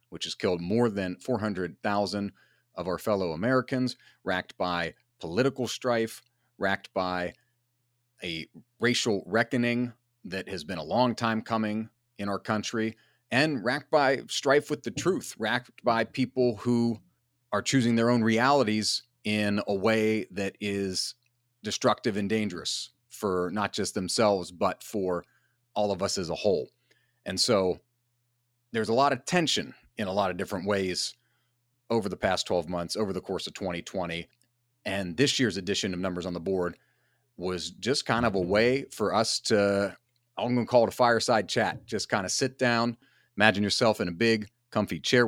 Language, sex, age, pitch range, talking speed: English, male, 40-59, 100-120 Hz, 165 wpm